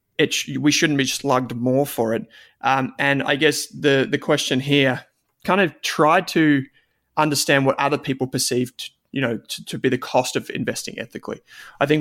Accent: Australian